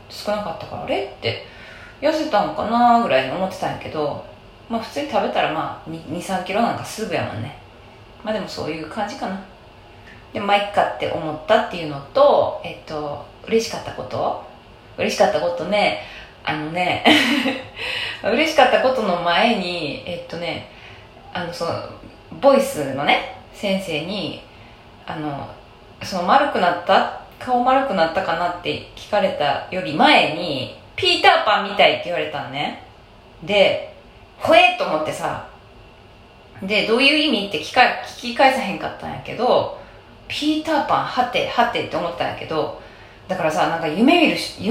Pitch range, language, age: 175-275 Hz, Japanese, 20-39